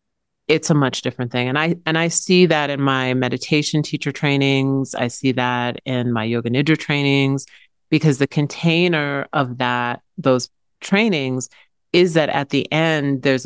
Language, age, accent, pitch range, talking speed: English, 40-59, American, 130-160 Hz, 165 wpm